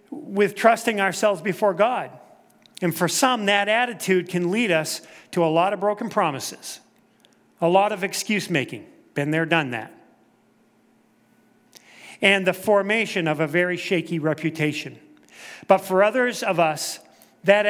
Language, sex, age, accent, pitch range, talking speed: English, male, 40-59, American, 165-205 Hz, 140 wpm